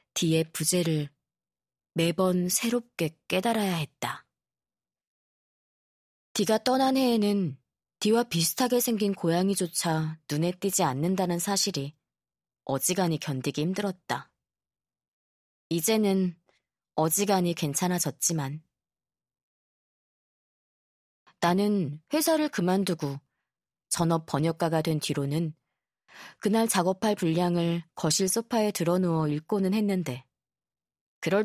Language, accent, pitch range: Korean, native, 155-200 Hz